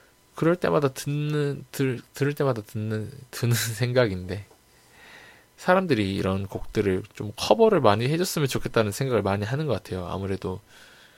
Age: 20-39